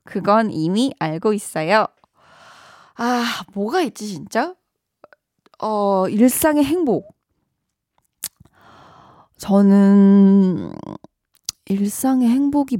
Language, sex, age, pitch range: Korean, female, 20-39, 190-255 Hz